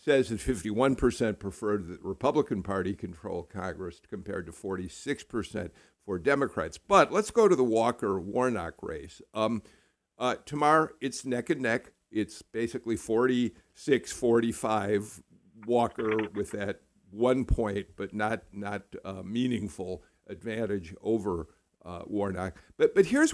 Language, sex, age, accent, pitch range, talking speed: English, male, 50-69, American, 105-150 Hz, 125 wpm